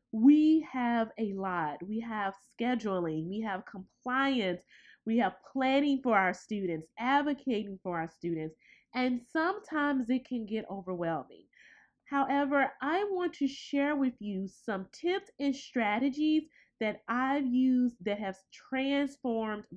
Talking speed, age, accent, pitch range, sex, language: 130 wpm, 20-39, American, 195-275 Hz, female, English